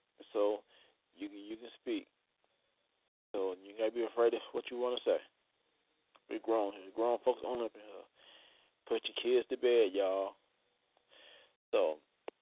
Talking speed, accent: 160 wpm, American